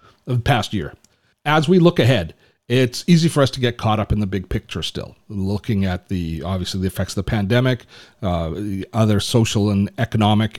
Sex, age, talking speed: male, 40-59, 200 wpm